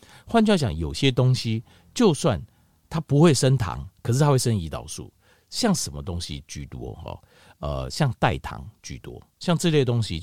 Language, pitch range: Chinese, 95-150 Hz